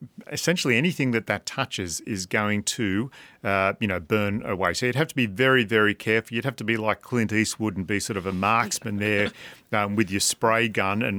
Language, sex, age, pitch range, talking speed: English, male, 40-59, 100-120 Hz, 220 wpm